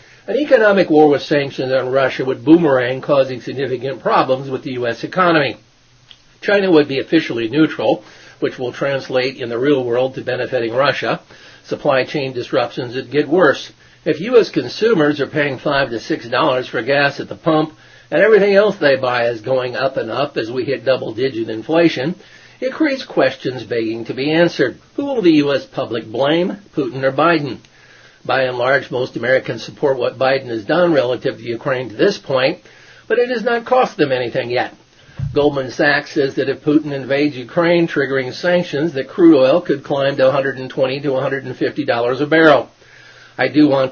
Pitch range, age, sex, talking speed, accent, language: 130-160 Hz, 60-79, male, 175 wpm, American, English